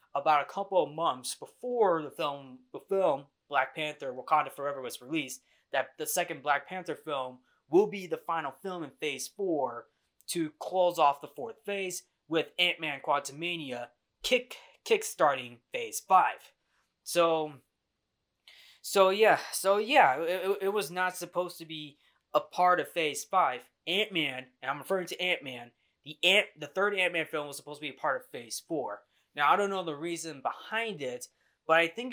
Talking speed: 170 wpm